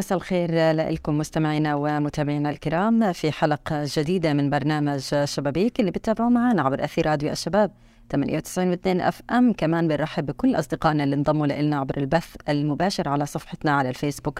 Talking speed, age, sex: 145 wpm, 30-49, female